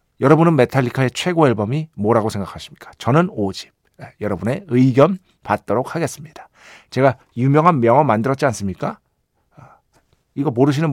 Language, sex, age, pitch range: Korean, male, 50-69, 120-180 Hz